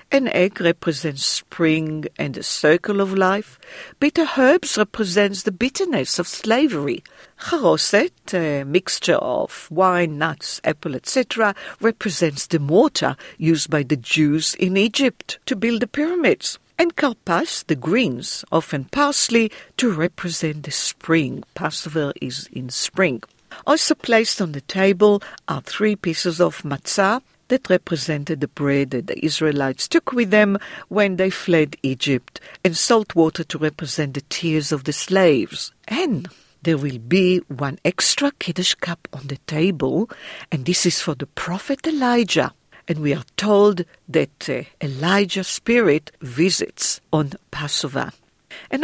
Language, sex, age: Hebrew, female, 50-69